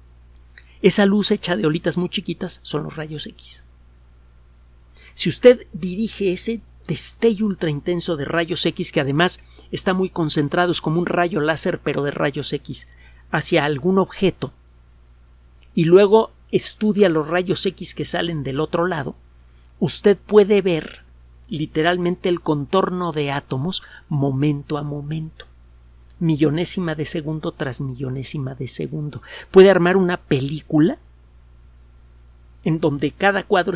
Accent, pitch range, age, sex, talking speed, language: Mexican, 125-185 Hz, 50-69, male, 135 wpm, Spanish